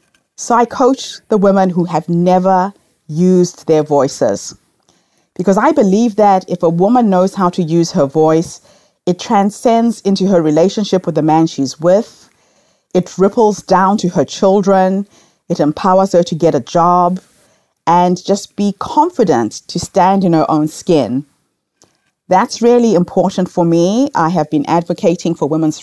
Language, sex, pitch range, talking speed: English, female, 170-210 Hz, 160 wpm